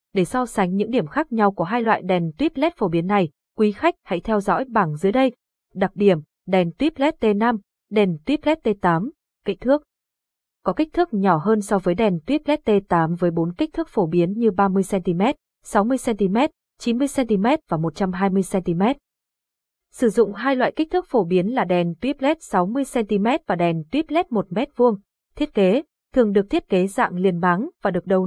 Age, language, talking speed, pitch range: 20-39, Vietnamese, 195 wpm, 190-260 Hz